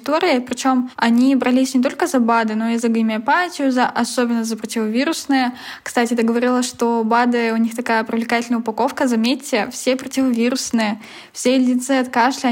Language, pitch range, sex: Russian, 230-255 Hz, female